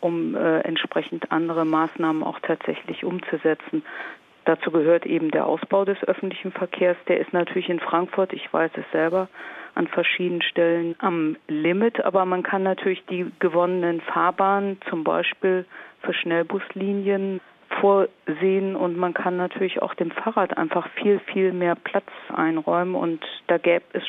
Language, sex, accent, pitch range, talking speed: German, female, German, 165-190 Hz, 145 wpm